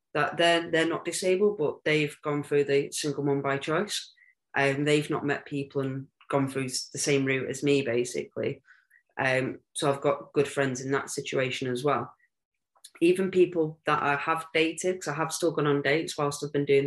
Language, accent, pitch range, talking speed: English, British, 135-155 Hz, 200 wpm